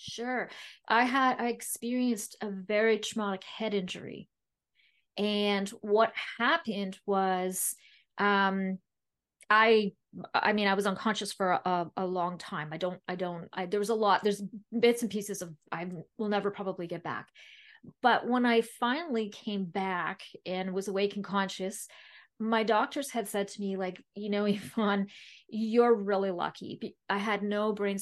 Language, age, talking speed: English, 30-49, 160 wpm